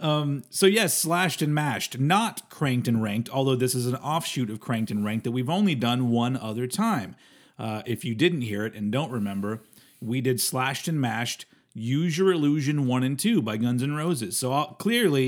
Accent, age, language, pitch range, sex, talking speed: American, 40-59, English, 115-145 Hz, male, 210 wpm